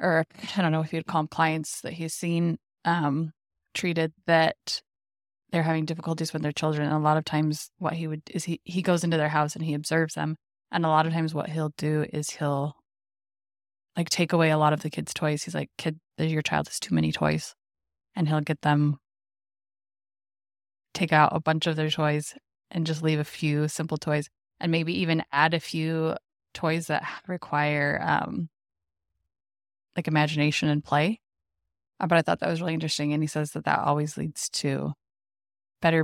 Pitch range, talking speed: 150-170 Hz, 195 wpm